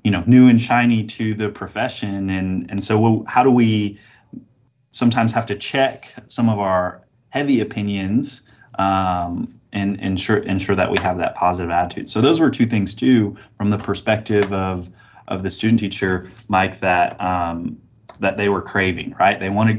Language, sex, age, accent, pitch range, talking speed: English, male, 20-39, American, 90-110 Hz, 175 wpm